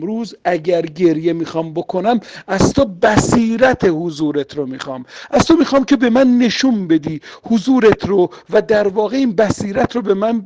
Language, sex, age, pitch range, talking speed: Persian, male, 50-69, 165-225 Hz, 165 wpm